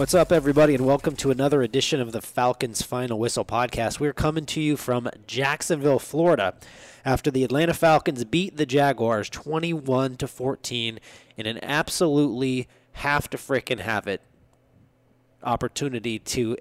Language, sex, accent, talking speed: English, male, American, 150 wpm